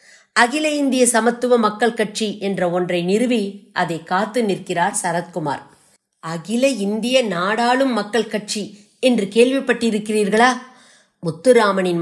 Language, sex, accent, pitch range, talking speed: Tamil, female, native, 180-235 Hz, 100 wpm